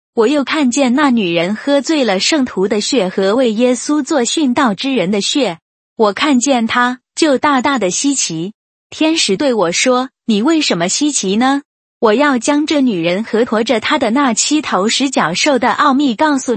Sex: female